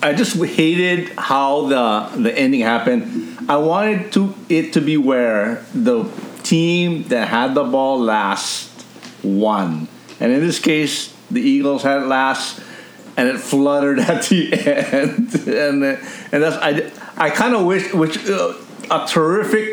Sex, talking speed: male, 150 wpm